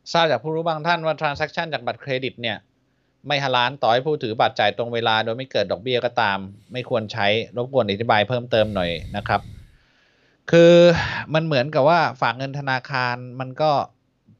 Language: Thai